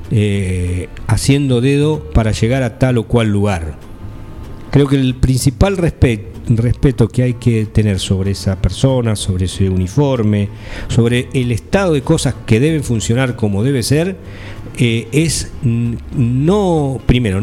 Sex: male